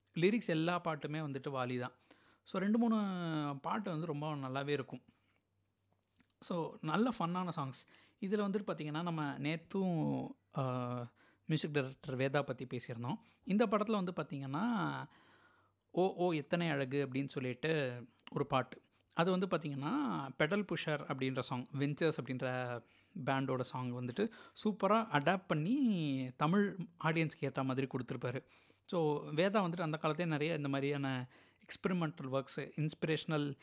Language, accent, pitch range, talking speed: Tamil, native, 130-175 Hz, 125 wpm